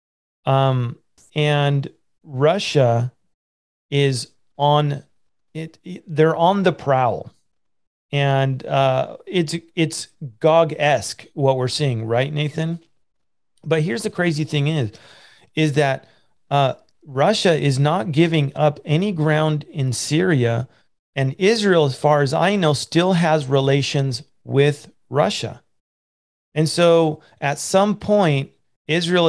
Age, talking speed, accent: 40-59, 115 wpm, American